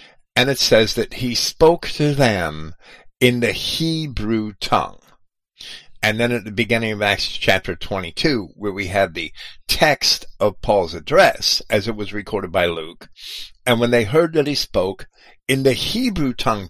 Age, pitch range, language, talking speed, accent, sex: 50-69, 100-130 Hz, English, 165 wpm, American, male